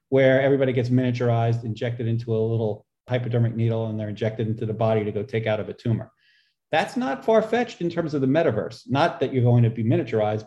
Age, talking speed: 40-59, 220 wpm